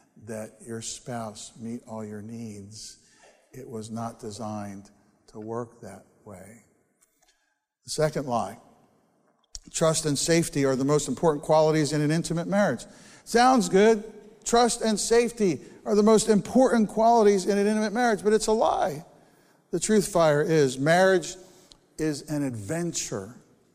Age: 60-79